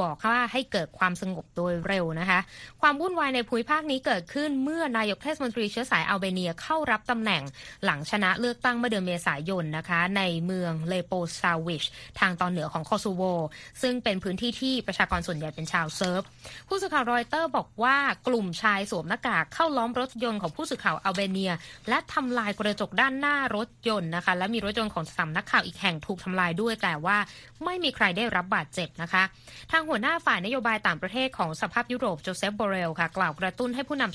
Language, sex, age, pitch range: Thai, female, 20-39, 180-245 Hz